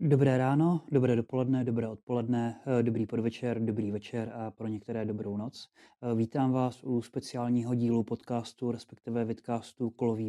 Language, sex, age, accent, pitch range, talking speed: Czech, male, 20-39, native, 115-125 Hz, 140 wpm